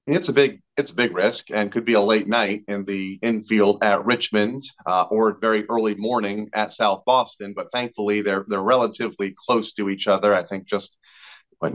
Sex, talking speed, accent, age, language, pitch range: male, 200 wpm, American, 40-59, English, 100-120 Hz